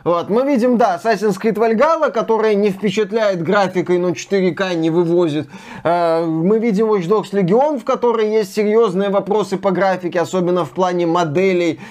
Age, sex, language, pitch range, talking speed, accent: 20-39, male, Russian, 170-215 Hz, 155 wpm, native